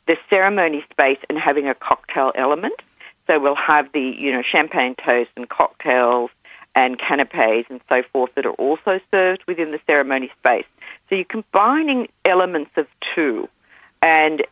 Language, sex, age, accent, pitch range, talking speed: English, female, 50-69, Australian, 130-170 Hz, 155 wpm